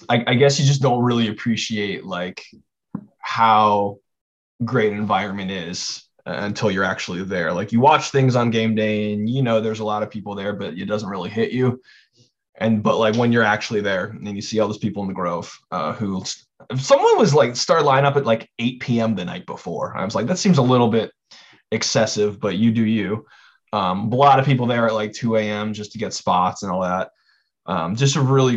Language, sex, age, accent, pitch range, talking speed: English, male, 20-39, American, 105-125 Hz, 225 wpm